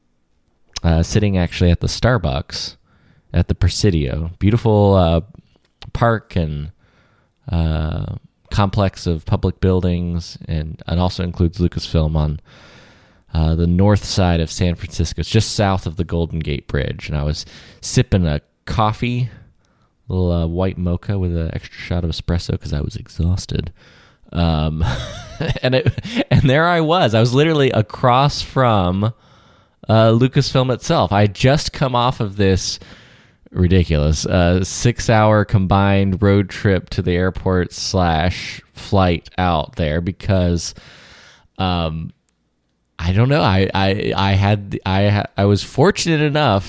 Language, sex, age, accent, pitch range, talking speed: English, male, 20-39, American, 85-110 Hz, 140 wpm